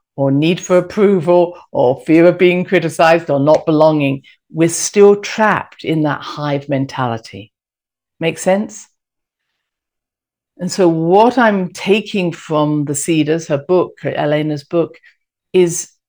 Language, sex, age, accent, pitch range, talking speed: English, female, 50-69, British, 150-200 Hz, 125 wpm